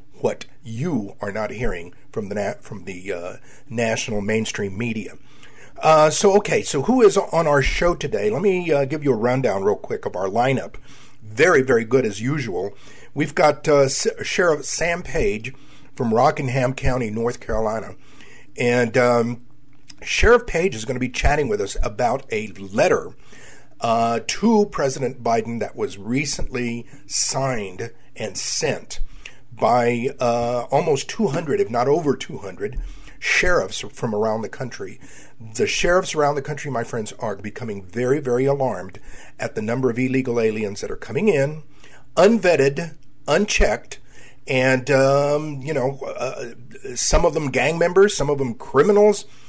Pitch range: 120-150 Hz